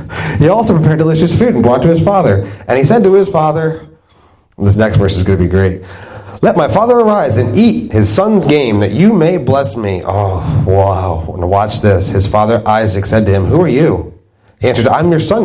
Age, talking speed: 30-49, 225 wpm